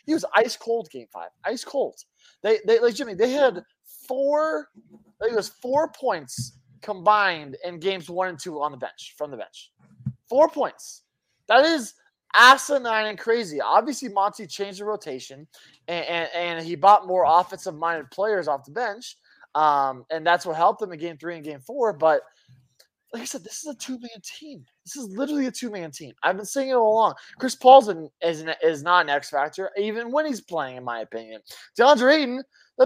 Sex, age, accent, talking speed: male, 20-39, American, 200 wpm